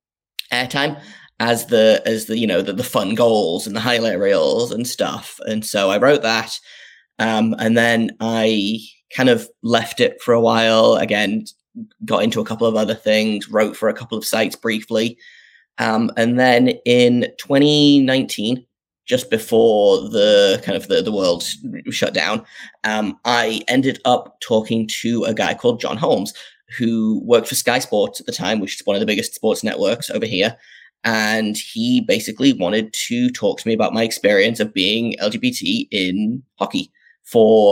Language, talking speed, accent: English, 175 wpm, British